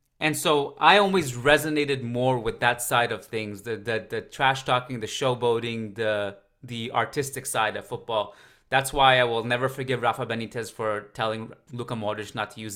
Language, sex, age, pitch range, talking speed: English, male, 30-49, 110-130 Hz, 185 wpm